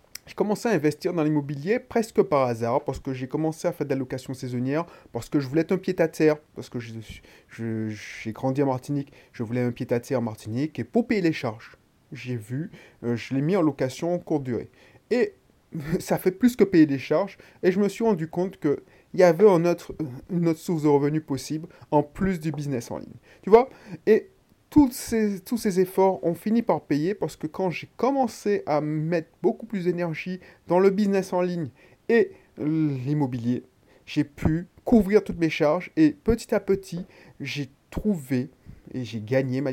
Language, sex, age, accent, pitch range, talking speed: French, male, 30-49, French, 130-185 Hz, 195 wpm